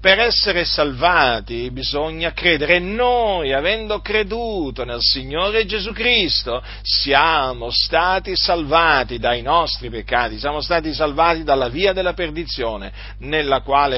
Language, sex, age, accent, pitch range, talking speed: Italian, male, 50-69, native, 110-175 Hz, 120 wpm